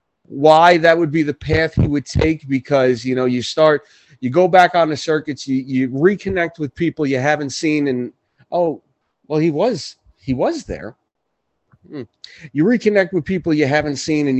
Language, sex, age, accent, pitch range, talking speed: English, male, 40-59, American, 130-165 Hz, 185 wpm